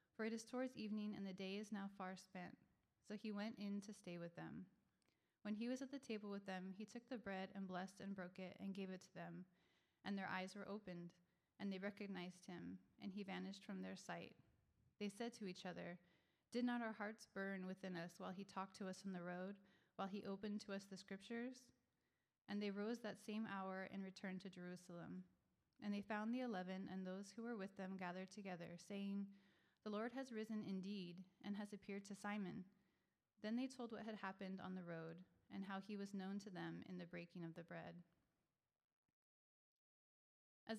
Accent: American